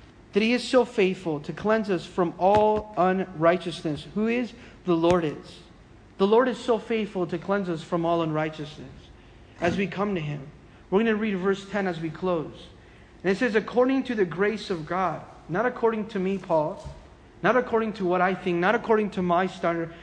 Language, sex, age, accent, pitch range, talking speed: English, male, 40-59, American, 175-225 Hz, 200 wpm